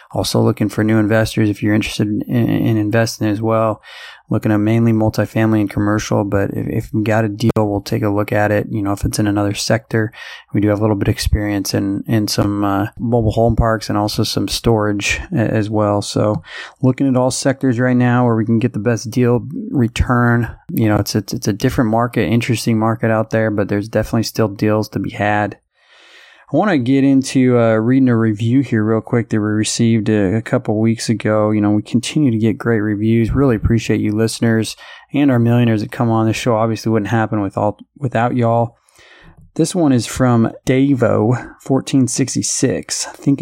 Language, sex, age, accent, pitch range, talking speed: English, male, 20-39, American, 105-125 Hz, 200 wpm